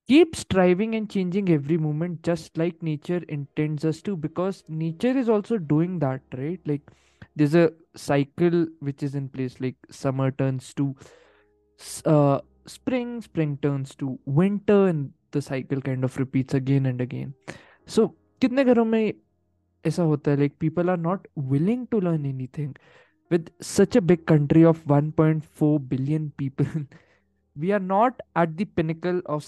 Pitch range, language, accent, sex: 145-190 Hz, Hindi, native, male